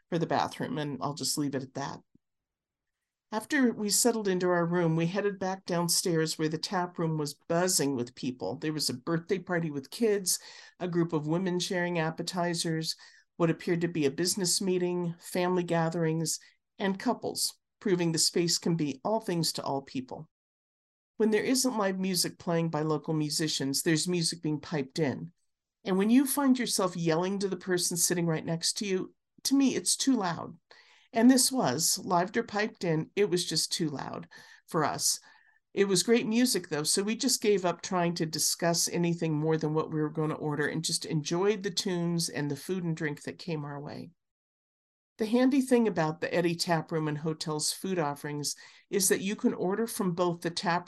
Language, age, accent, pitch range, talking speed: English, 50-69, American, 155-195 Hz, 190 wpm